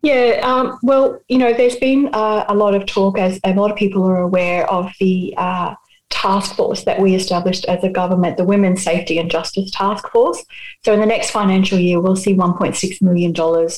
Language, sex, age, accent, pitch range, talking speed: English, female, 30-49, Australian, 165-195 Hz, 205 wpm